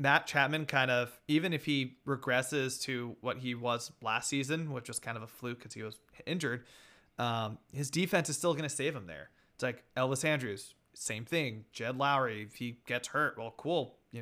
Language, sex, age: English, male, 30-49